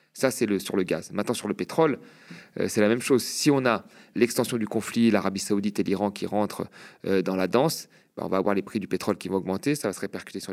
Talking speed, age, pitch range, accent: 270 wpm, 40-59, 105-135 Hz, French